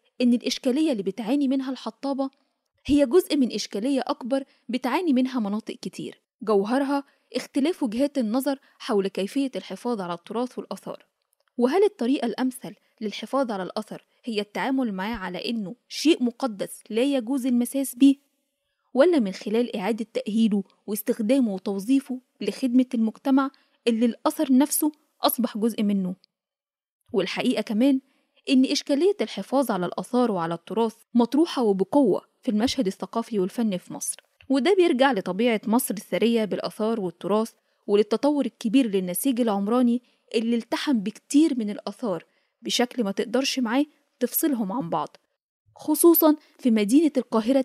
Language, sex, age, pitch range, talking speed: Arabic, female, 10-29, 215-275 Hz, 125 wpm